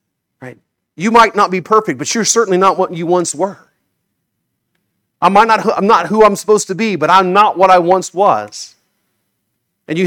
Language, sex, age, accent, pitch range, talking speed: English, male, 40-59, American, 145-185 Hz, 175 wpm